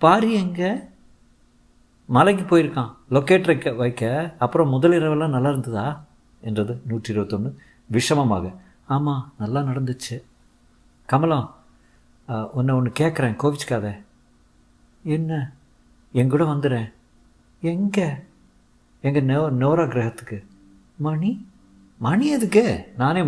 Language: Tamil